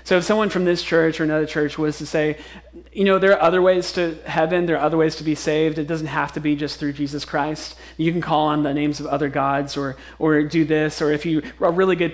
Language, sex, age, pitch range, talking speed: English, male, 30-49, 145-165 Hz, 270 wpm